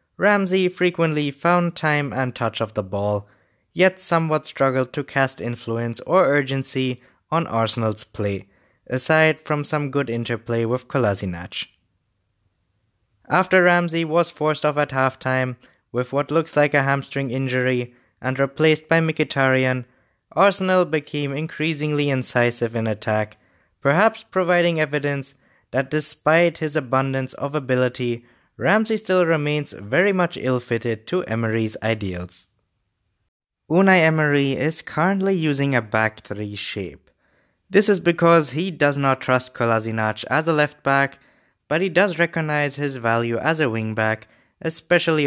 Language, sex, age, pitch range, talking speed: English, male, 20-39, 115-160 Hz, 135 wpm